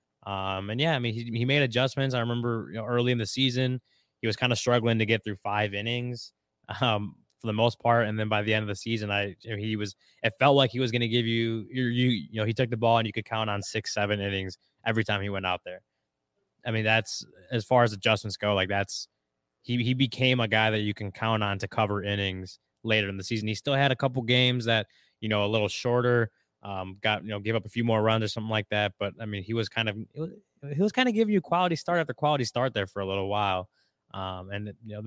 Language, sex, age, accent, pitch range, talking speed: English, male, 20-39, American, 105-120 Hz, 260 wpm